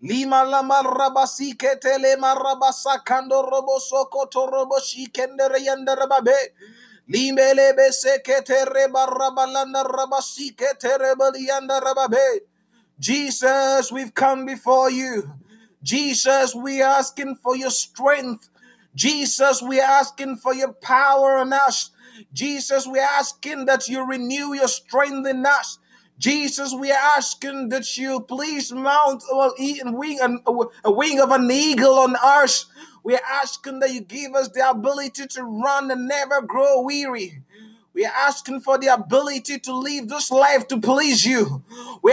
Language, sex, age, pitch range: Finnish, male, 30-49, 260-275 Hz